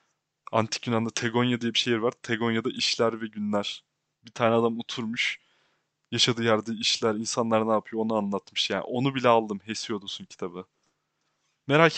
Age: 30-49